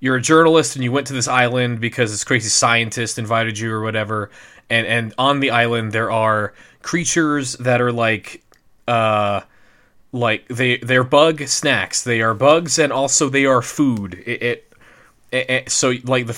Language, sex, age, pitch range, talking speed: English, male, 20-39, 115-140 Hz, 180 wpm